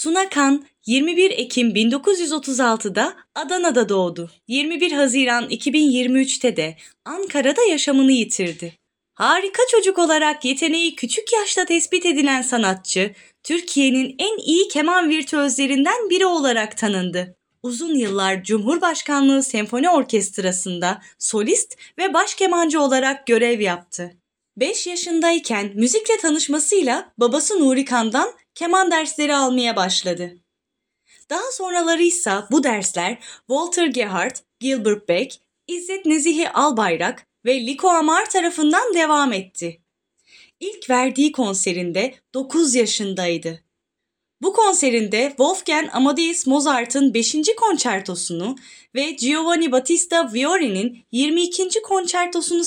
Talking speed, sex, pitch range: 100 wpm, female, 230-335 Hz